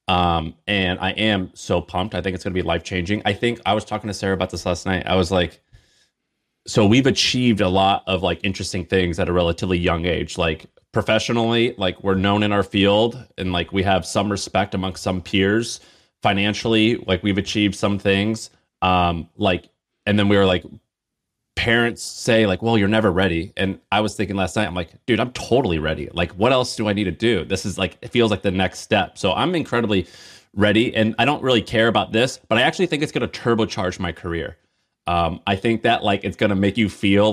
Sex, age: male, 30-49